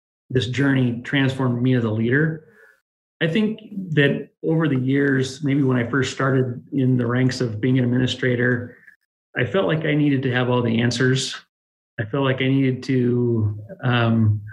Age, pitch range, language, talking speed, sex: 30-49, 120-140 Hz, English, 175 wpm, male